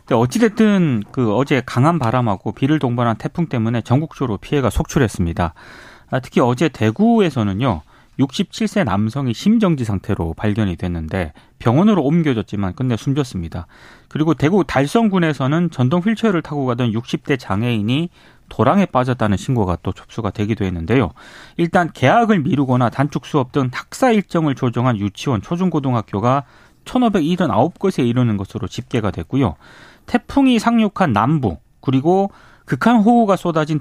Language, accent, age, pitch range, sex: Korean, native, 30-49, 110-175 Hz, male